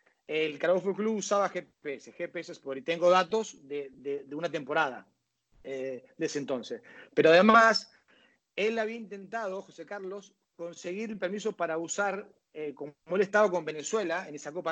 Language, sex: Spanish, male